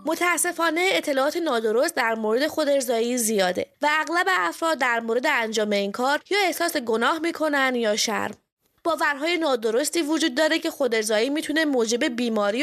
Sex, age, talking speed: female, 20-39, 145 wpm